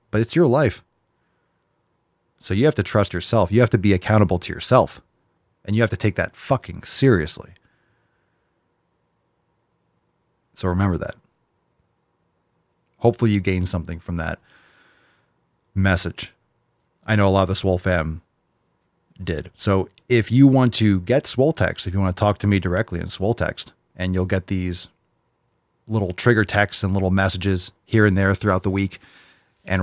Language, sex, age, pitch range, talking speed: English, male, 30-49, 90-115 Hz, 160 wpm